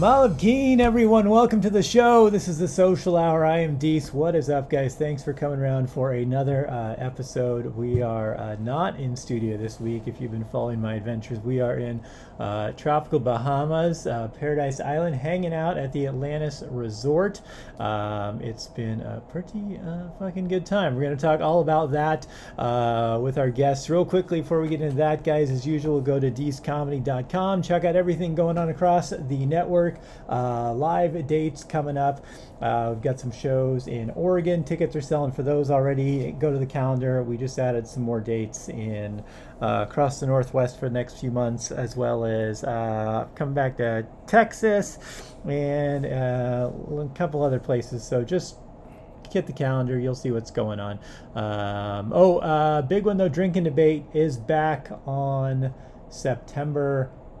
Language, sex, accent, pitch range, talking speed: English, male, American, 120-160 Hz, 180 wpm